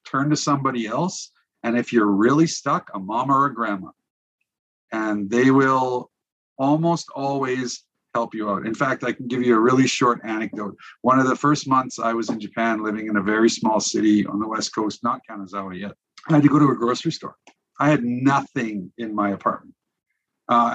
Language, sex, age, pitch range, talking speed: English, male, 50-69, 110-150 Hz, 195 wpm